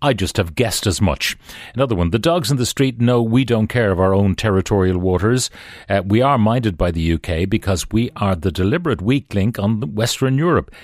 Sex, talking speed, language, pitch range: male, 215 wpm, English, 95-125 Hz